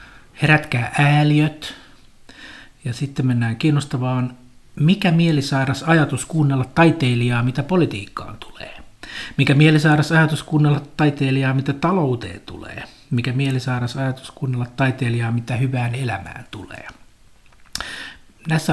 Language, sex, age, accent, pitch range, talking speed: Finnish, male, 60-79, native, 120-150 Hz, 105 wpm